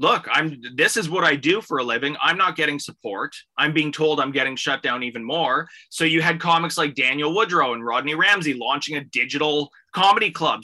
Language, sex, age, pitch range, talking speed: English, male, 20-39, 130-160 Hz, 215 wpm